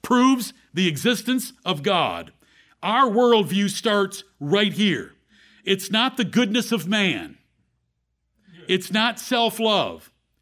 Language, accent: English, American